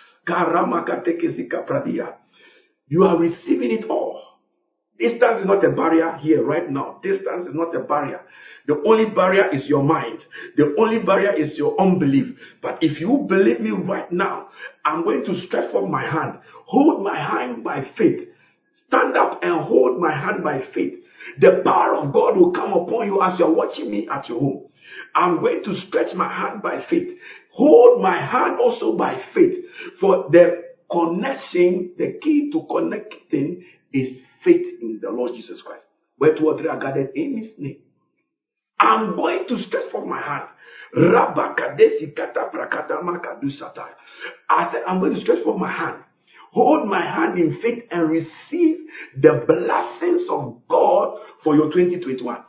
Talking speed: 160 wpm